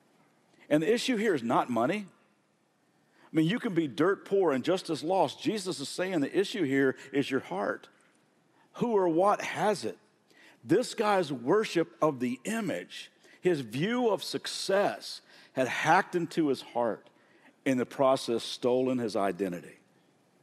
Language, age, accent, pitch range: English, 50-69, American, 140-175 Hz